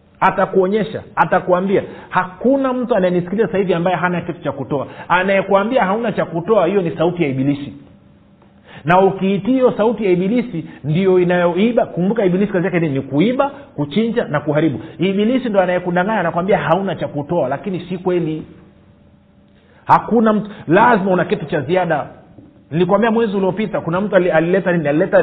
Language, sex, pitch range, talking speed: Swahili, male, 145-205 Hz, 150 wpm